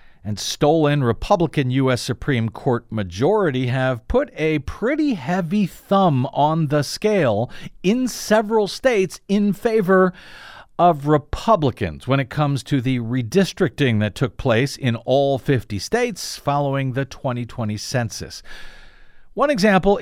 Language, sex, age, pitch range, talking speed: English, male, 50-69, 135-195 Hz, 125 wpm